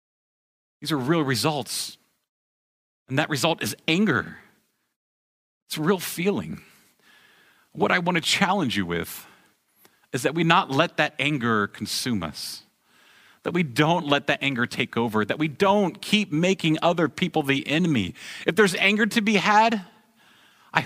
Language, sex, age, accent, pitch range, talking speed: English, male, 40-59, American, 115-170 Hz, 150 wpm